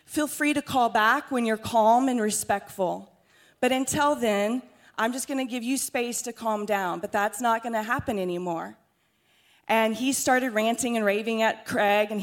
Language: English